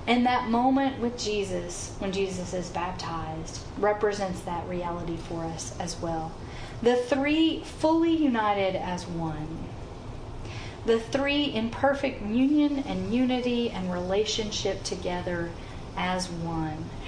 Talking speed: 120 wpm